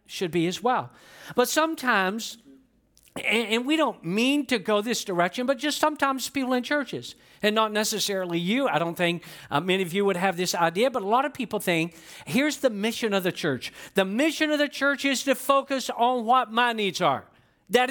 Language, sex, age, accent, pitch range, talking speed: English, male, 50-69, American, 185-250 Hz, 210 wpm